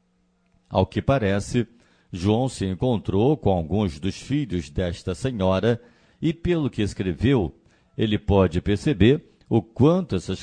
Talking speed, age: 125 wpm, 50-69